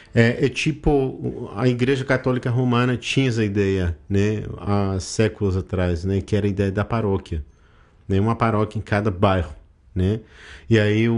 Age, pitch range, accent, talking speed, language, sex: 50-69, 100-115 Hz, Brazilian, 160 wpm, Portuguese, male